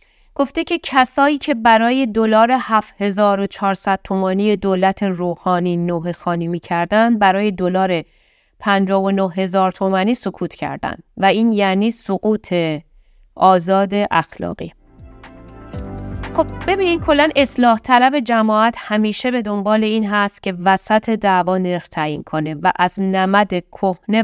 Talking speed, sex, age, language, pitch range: 115 wpm, female, 30-49, Persian, 175-220 Hz